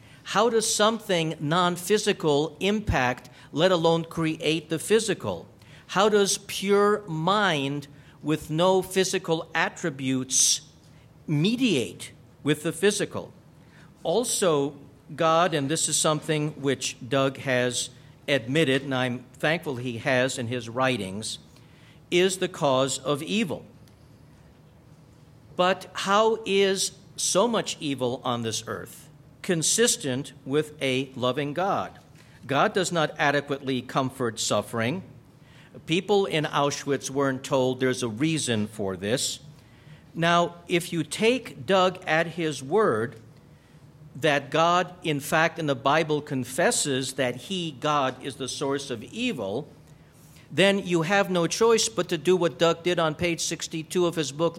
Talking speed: 130 wpm